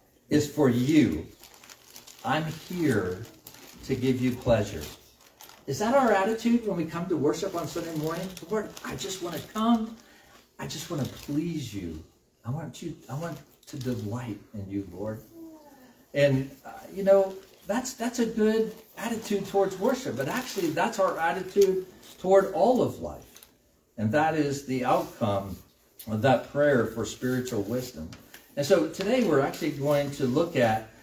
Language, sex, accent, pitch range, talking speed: English, male, American, 115-175 Hz, 160 wpm